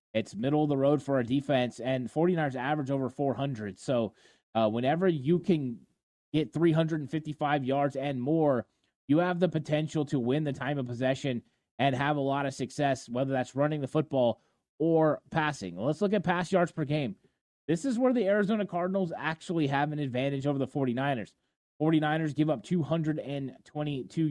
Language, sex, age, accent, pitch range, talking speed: English, male, 30-49, American, 135-160 Hz, 175 wpm